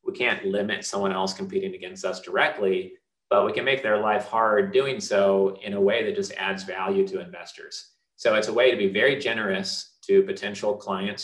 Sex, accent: male, American